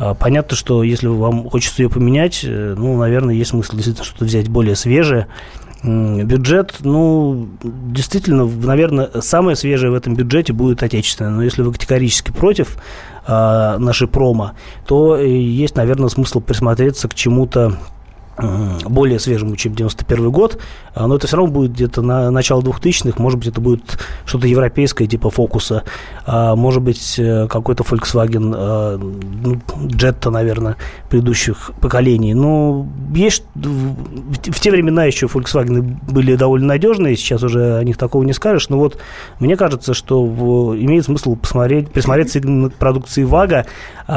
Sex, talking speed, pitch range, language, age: male, 135 wpm, 115-135 Hz, Russian, 20-39